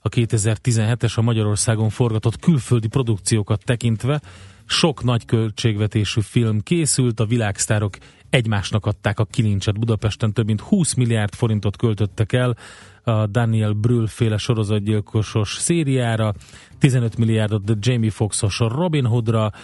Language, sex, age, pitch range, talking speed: Hungarian, male, 30-49, 105-120 Hz, 120 wpm